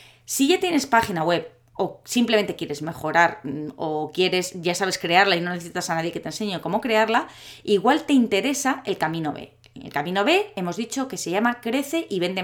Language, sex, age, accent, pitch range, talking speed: Spanish, female, 20-39, Spanish, 175-240 Hz, 200 wpm